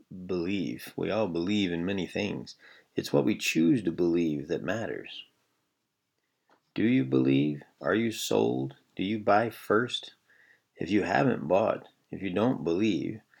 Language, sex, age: English, male, 40-59